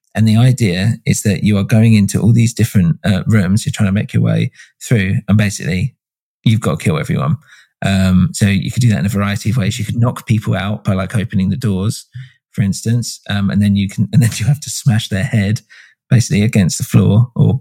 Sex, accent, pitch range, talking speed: male, British, 100-120 Hz, 235 wpm